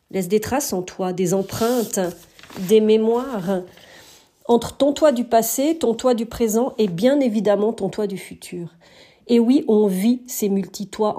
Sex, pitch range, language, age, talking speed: female, 195-250 Hz, French, 40-59, 165 wpm